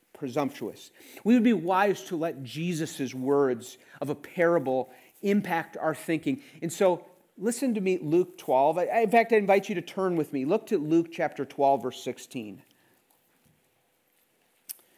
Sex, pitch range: male, 155-210 Hz